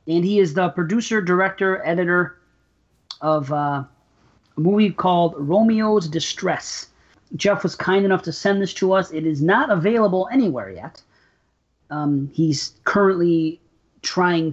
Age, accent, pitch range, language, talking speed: 40-59, American, 150-195 Hz, English, 135 wpm